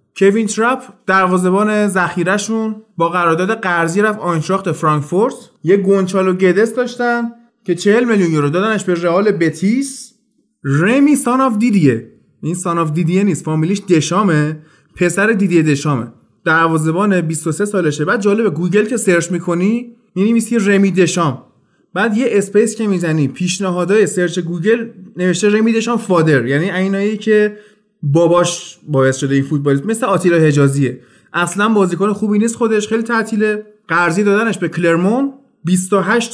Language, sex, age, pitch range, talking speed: Persian, male, 20-39, 170-210 Hz, 135 wpm